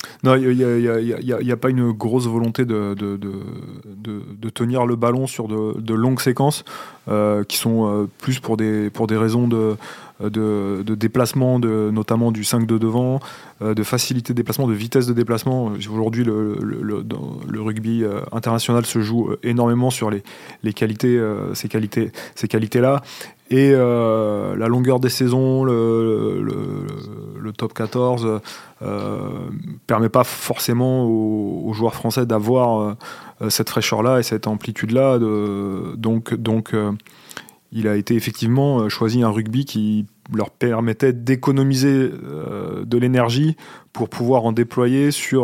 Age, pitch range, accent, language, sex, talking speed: 20-39, 110-125 Hz, French, French, male, 160 wpm